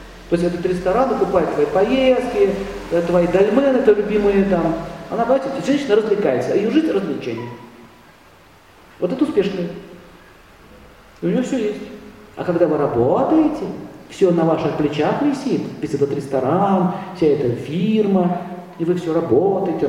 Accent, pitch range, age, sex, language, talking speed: native, 150-205 Hz, 40-59, male, Russian, 140 wpm